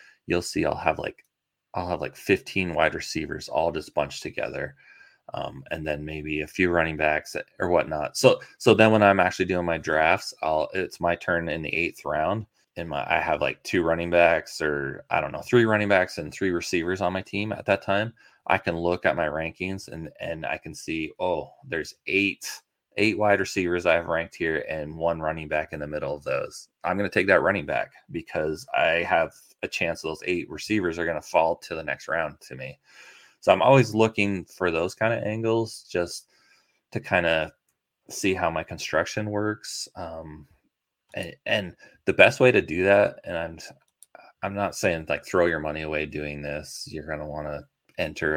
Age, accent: 20-39, American